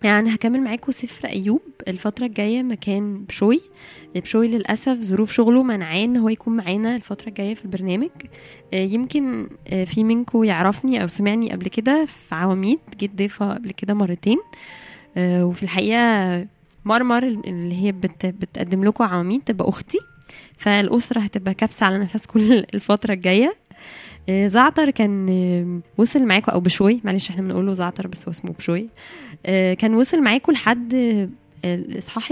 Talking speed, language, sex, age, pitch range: 130 wpm, Arabic, female, 10-29, 190-235 Hz